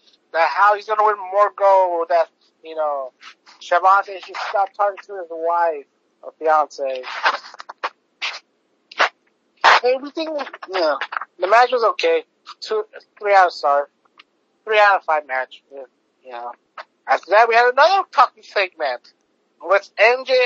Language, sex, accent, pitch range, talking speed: English, male, American, 165-255 Hz, 145 wpm